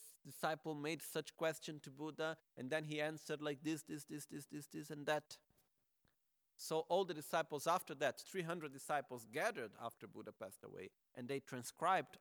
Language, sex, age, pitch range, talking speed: Italian, male, 40-59, 135-170 Hz, 170 wpm